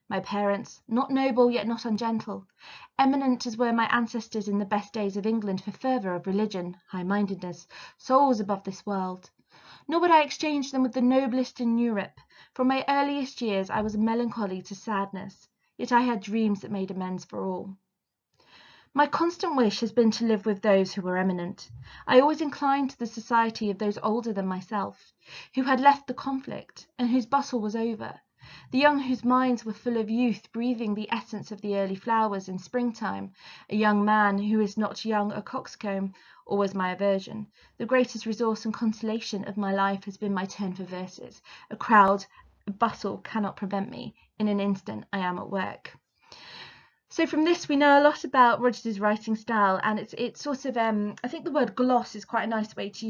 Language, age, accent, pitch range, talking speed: English, 20-39, British, 200-250 Hz, 195 wpm